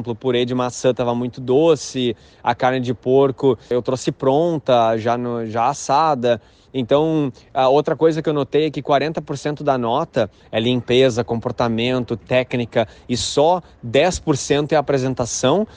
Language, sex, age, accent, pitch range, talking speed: Portuguese, male, 20-39, Brazilian, 120-140 Hz, 150 wpm